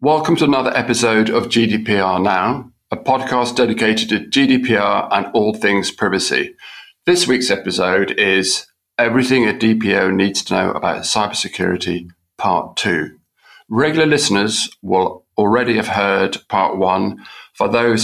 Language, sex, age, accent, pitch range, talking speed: English, male, 40-59, British, 95-115 Hz, 135 wpm